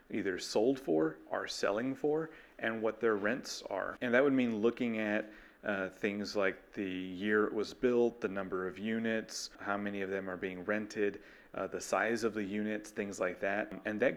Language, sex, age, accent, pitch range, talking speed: English, male, 30-49, American, 100-120 Hz, 200 wpm